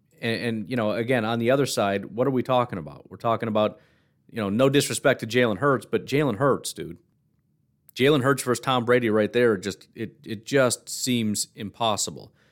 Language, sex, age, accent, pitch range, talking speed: English, male, 40-59, American, 110-125 Hz, 195 wpm